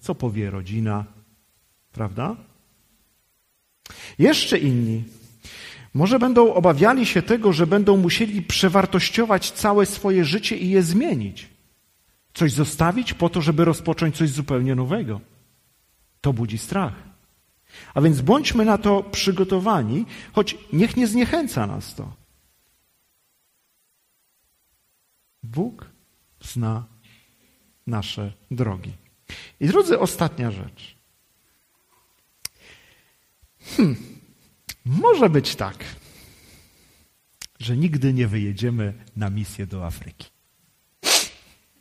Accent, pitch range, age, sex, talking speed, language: native, 110-185 Hz, 40-59, male, 90 wpm, Polish